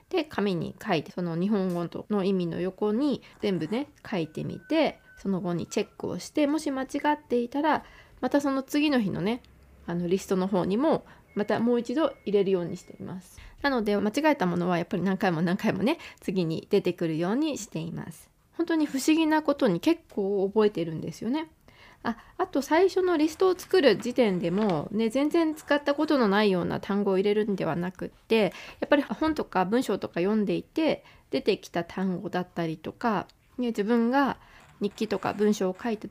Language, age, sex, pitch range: Japanese, 20-39, female, 185-280 Hz